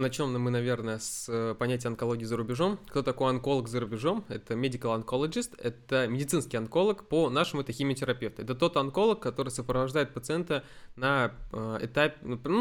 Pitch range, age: 120-155 Hz, 20-39